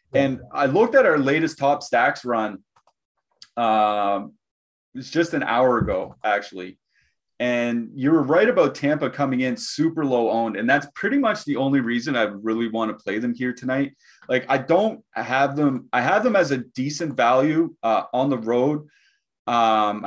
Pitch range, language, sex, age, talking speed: 125-155 Hz, English, male, 30-49, 175 wpm